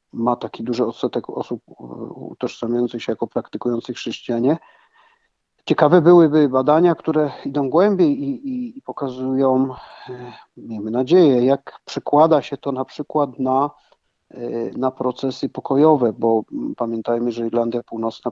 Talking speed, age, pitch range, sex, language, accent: 120 wpm, 50-69, 115-130 Hz, male, Polish, native